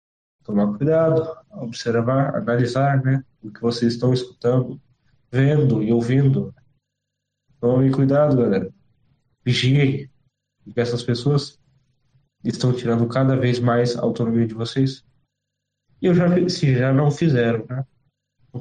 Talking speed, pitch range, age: 125 wpm, 120-140 Hz, 20-39